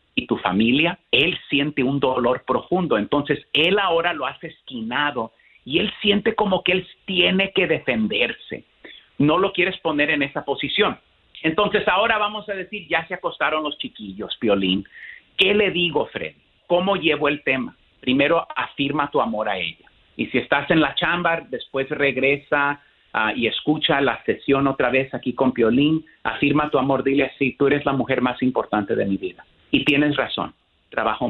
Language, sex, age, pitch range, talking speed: Spanish, male, 50-69, 120-165 Hz, 175 wpm